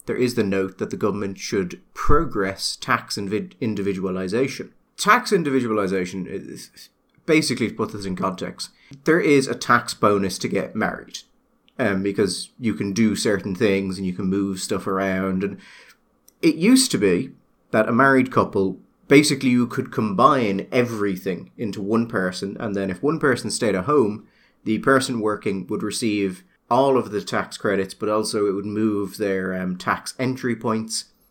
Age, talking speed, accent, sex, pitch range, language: 30-49, 165 wpm, British, male, 100-135 Hz, English